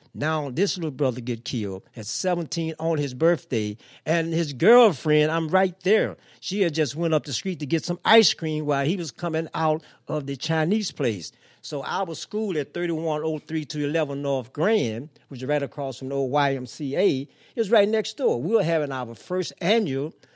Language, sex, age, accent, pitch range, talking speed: English, male, 60-79, American, 135-180 Hz, 190 wpm